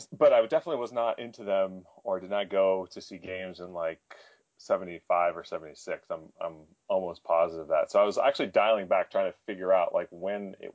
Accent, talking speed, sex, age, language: American, 225 wpm, male, 30-49, English